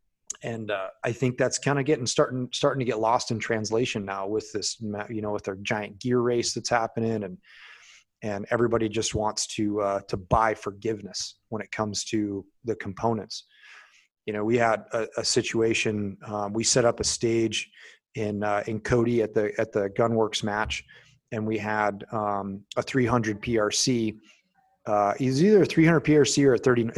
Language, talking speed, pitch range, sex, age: English, 185 wpm, 105-130 Hz, male, 30-49